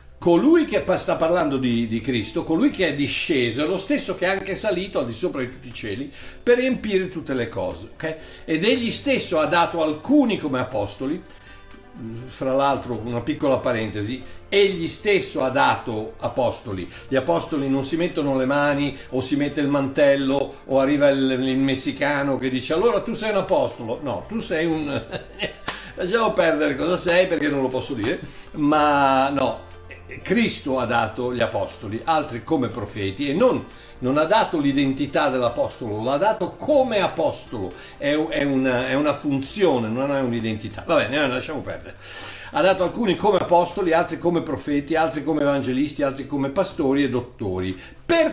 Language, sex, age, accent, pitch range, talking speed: Italian, male, 60-79, native, 125-175 Hz, 165 wpm